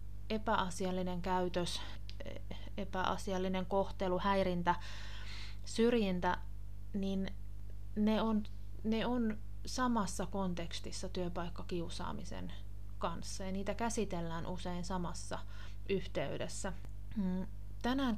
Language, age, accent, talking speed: Finnish, 30-49, native, 65 wpm